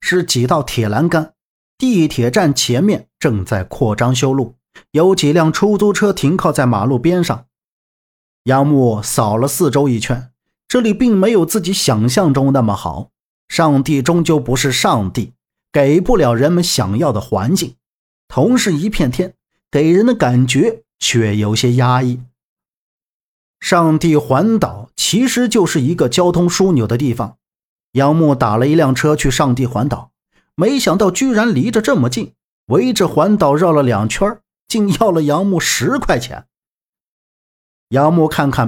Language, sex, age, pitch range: Chinese, male, 50-69, 125-185 Hz